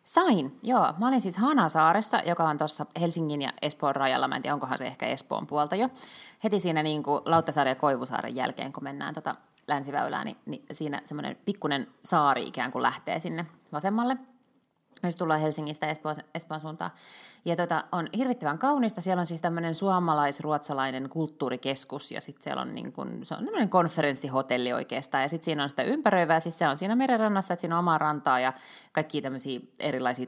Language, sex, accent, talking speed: Finnish, female, native, 185 wpm